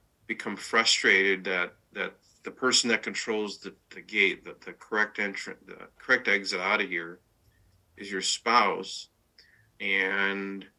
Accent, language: American, English